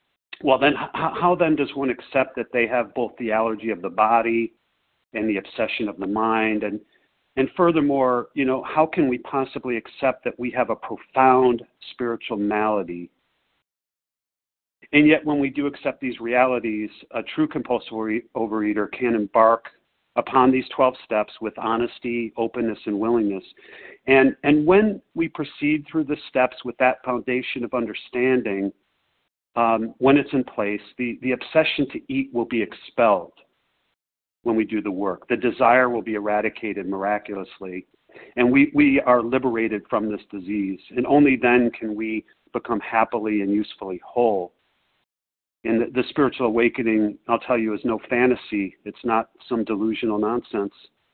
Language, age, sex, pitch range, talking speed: English, 40-59, male, 110-130 Hz, 155 wpm